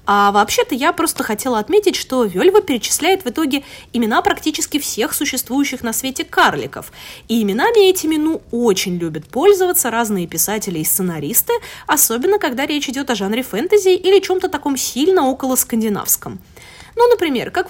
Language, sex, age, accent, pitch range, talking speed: Russian, female, 20-39, native, 230-360 Hz, 150 wpm